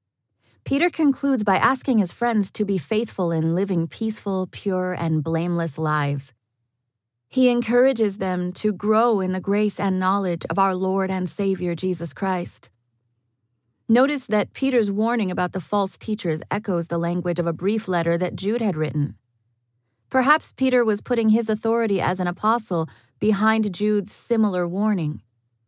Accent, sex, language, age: American, female, English, 30-49